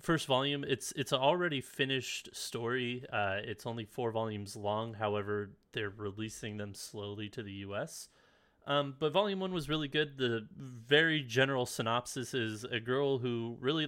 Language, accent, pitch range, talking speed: English, American, 110-145 Hz, 160 wpm